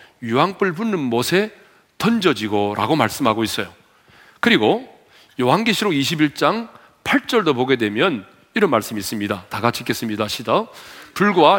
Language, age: Korean, 40-59